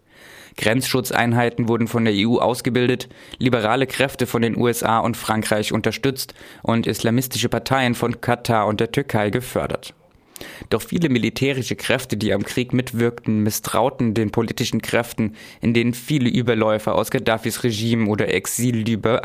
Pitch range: 110-125 Hz